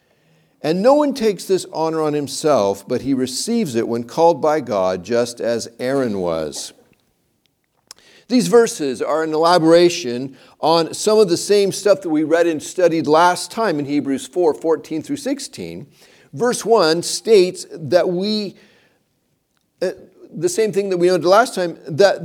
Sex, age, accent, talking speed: male, 50-69, American, 155 wpm